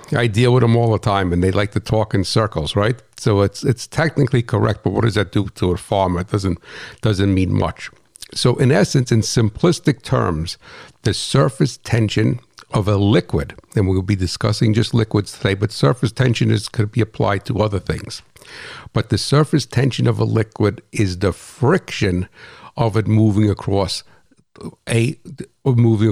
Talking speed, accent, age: 180 wpm, American, 60-79